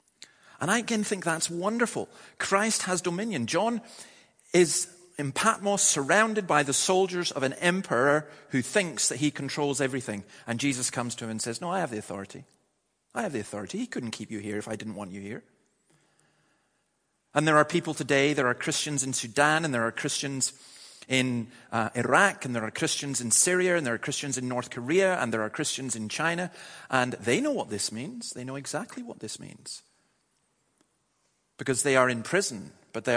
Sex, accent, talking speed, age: male, British, 195 wpm, 40-59